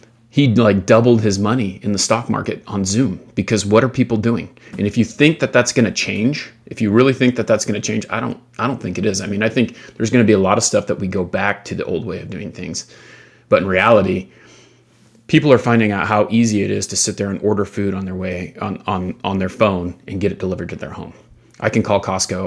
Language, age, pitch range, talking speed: English, 30-49, 95-115 Hz, 265 wpm